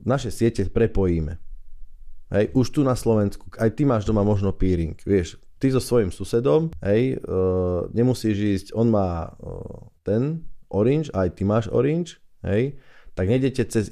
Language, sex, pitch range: Slovak, male, 90-115 Hz